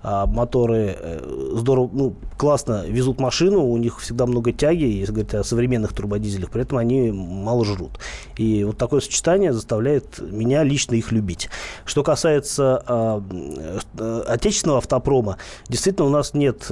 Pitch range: 110-135 Hz